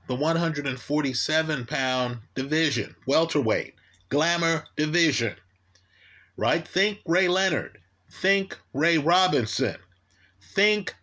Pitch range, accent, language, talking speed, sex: 110-165 Hz, American, English, 75 wpm, male